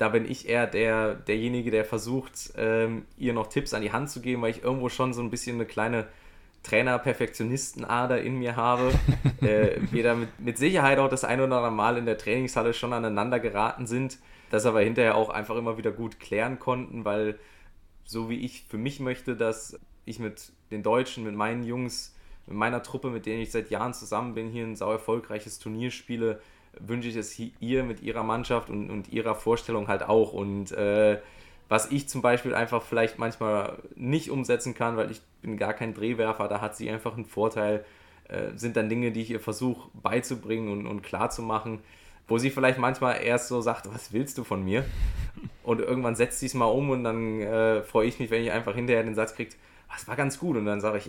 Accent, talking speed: German, 205 wpm